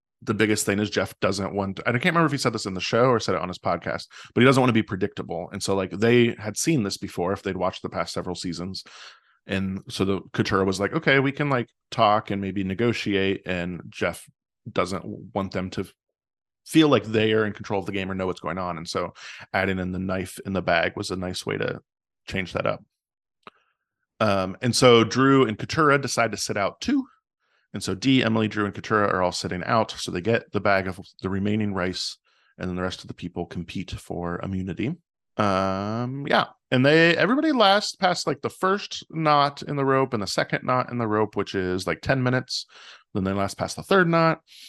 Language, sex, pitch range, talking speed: English, male, 95-125 Hz, 230 wpm